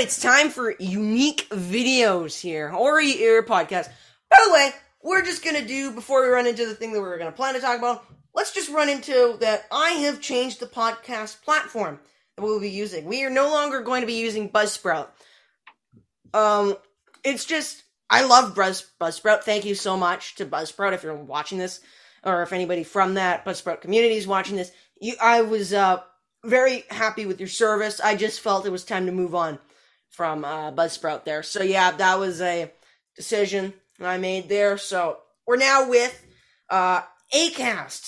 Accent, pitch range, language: American, 190-250 Hz, English